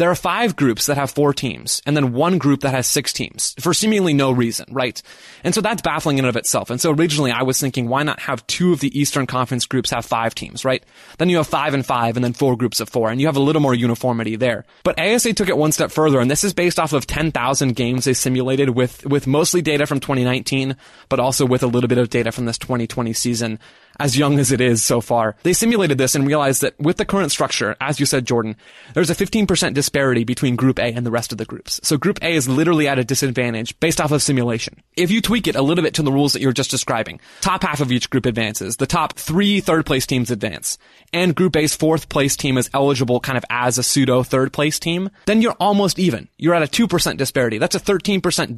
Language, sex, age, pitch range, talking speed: English, male, 20-39, 125-165 Hz, 250 wpm